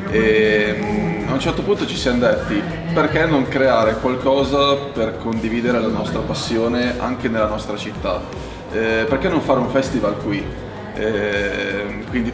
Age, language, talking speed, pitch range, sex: 20-39, Italian, 145 wpm, 105-130 Hz, male